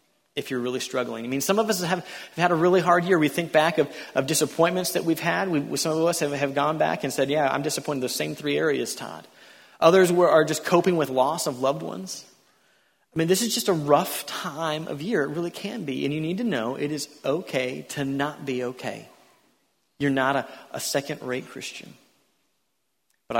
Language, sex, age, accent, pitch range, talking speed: English, male, 30-49, American, 140-195 Hz, 225 wpm